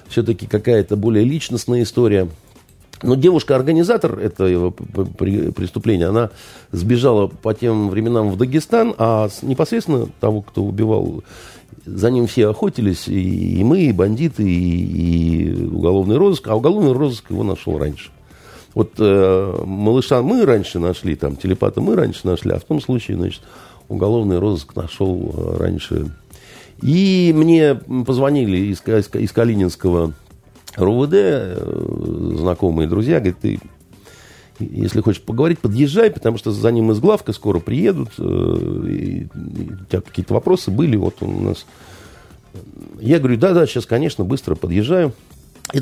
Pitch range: 95-125 Hz